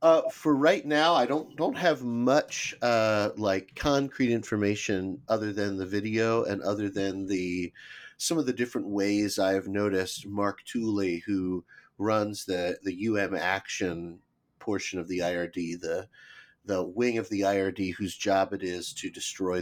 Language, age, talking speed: English, 40-59, 160 wpm